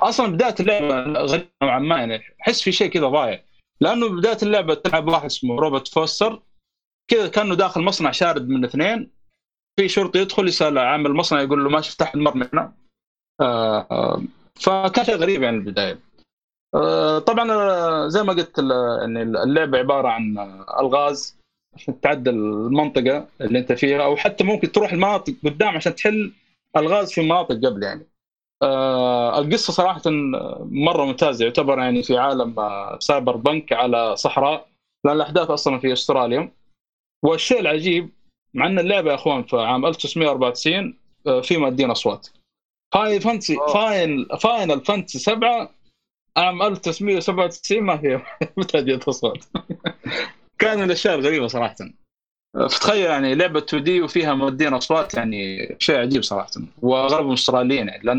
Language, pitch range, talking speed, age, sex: Arabic, 135-200 Hz, 140 wpm, 30-49, male